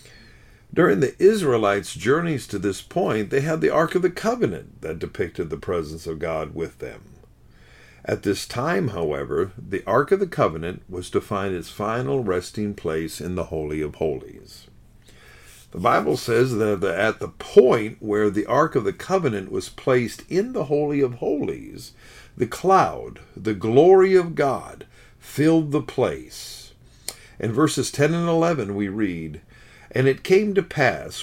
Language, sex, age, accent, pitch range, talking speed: English, male, 50-69, American, 100-155 Hz, 160 wpm